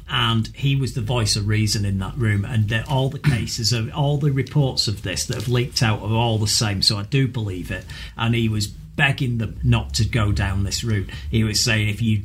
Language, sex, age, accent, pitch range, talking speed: English, male, 40-59, British, 110-145 Hz, 235 wpm